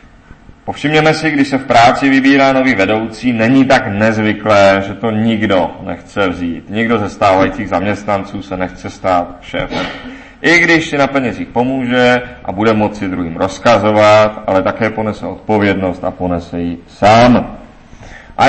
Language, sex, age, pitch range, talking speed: Czech, male, 30-49, 100-135 Hz, 145 wpm